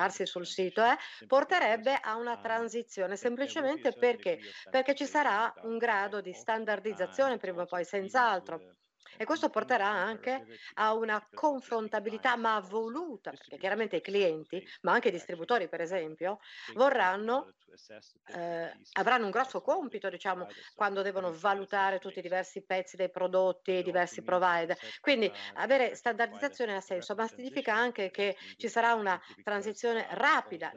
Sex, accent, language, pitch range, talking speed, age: female, Italian, English, 180-230 Hz, 140 wpm, 50-69